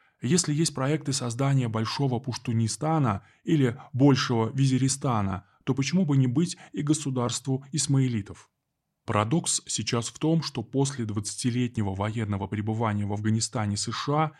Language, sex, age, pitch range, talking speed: Russian, male, 20-39, 110-140 Hz, 120 wpm